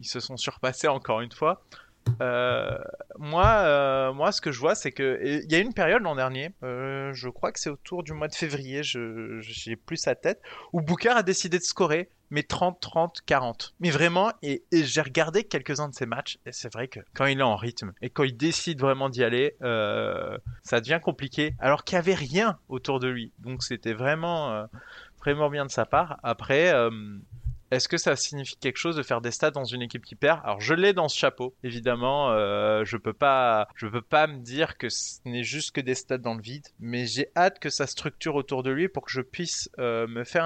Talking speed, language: 225 wpm, French